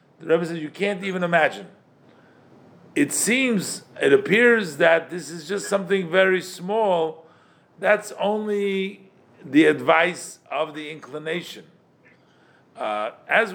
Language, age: English, 50-69